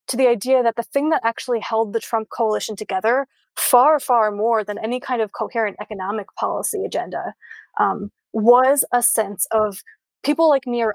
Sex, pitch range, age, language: female, 220-255 Hz, 20-39, English